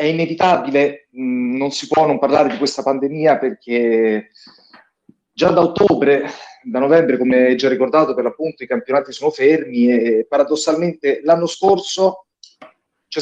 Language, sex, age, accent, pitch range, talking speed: Italian, male, 30-49, native, 130-170 Hz, 135 wpm